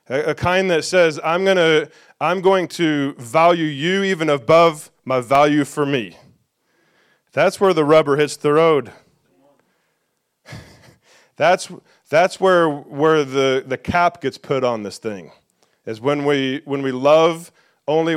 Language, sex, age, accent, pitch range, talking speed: English, male, 30-49, American, 135-165 Hz, 140 wpm